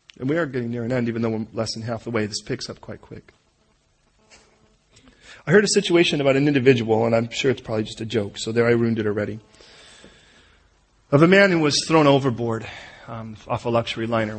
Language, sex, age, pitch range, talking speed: English, male, 30-49, 110-125 Hz, 220 wpm